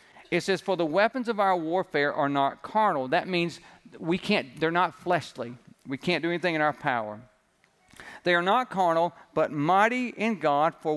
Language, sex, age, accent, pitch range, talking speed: English, male, 50-69, American, 155-230 Hz, 185 wpm